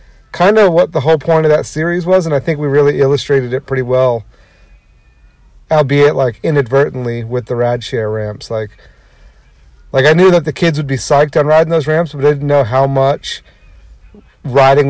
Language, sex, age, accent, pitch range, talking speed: English, male, 40-59, American, 115-145 Hz, 195 wpm